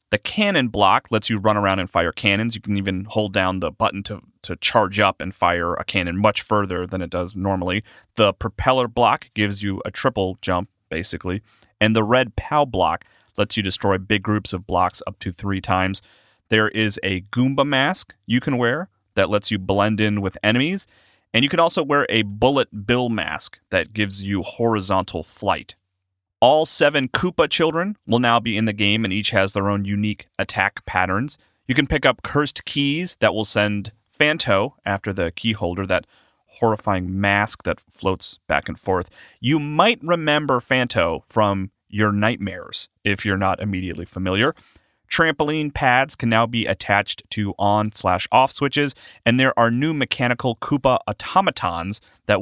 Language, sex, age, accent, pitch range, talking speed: English, male, 30-49, American, 95-125 Hz, 175 wpm